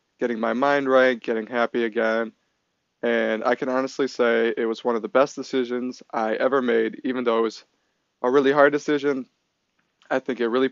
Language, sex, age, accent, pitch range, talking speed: English, male, 20-39, American, 115-130 Hz, 190 wpm